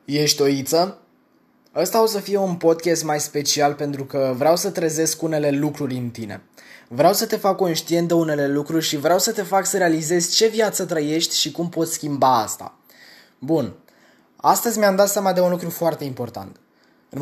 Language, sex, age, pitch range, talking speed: Romanian, male, 20-39, 145-190 Hz, 190 wpm